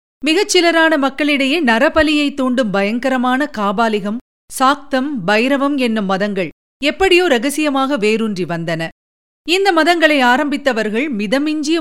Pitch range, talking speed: 220-300 Hz, 90 wpm